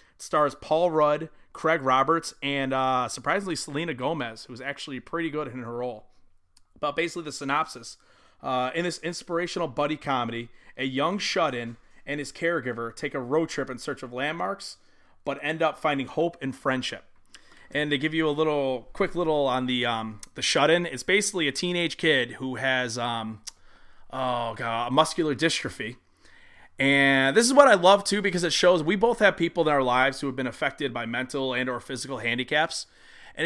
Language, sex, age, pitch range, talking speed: English, male, 30-49, 130-165 Hz, 185 wpm